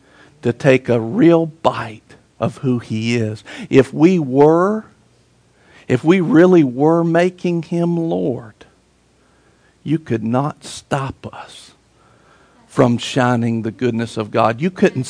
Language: English